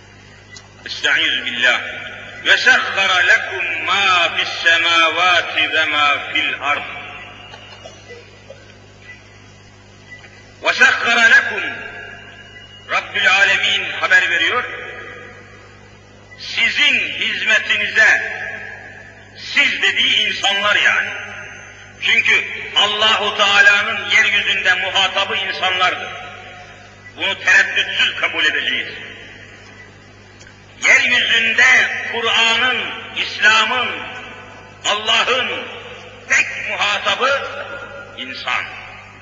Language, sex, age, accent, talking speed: Turkish, male, 50-69, native, 60 wpm